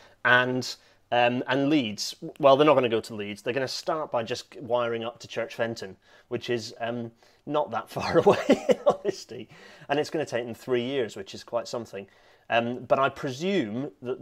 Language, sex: English, male